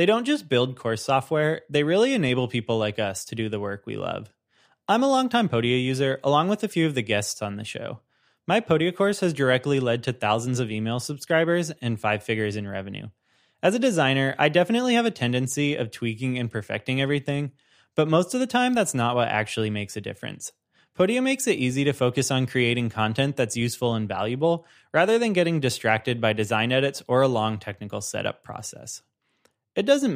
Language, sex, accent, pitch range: English, male, American, 115-165 Hz